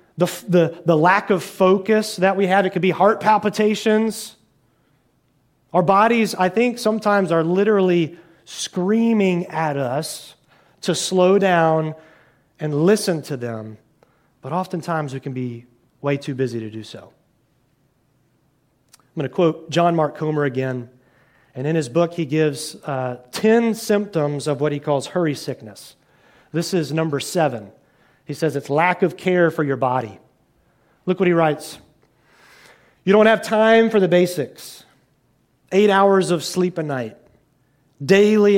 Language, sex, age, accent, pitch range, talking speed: English, male, 30-49, American, 140-195 Hz, 150 wpm